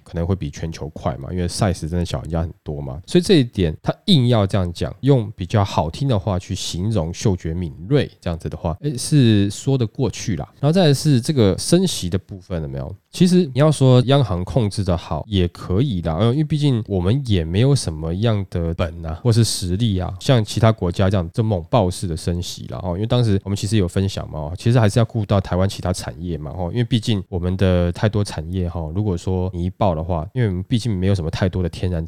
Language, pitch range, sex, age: Chinese, 90-120 Hz, male, 20-39